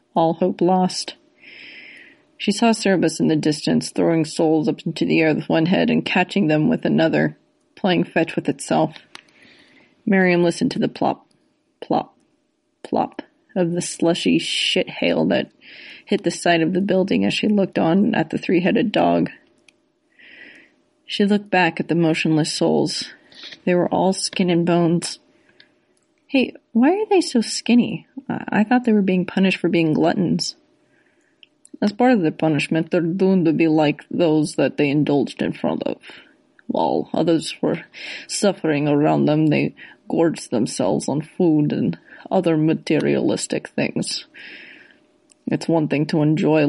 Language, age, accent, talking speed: English, 30-49, American, 155 wpm